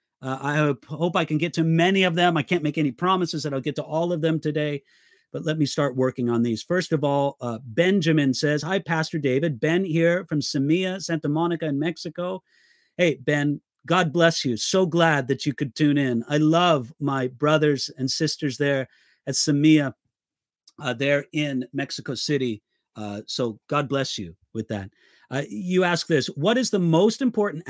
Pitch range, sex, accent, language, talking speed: 125-170 Hz, male, American, English, 195 wpm